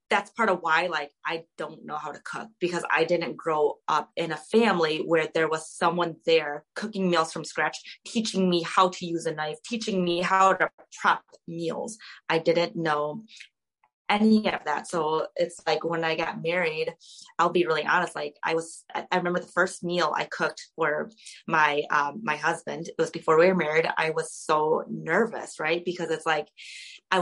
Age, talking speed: 20-39, 195 wpm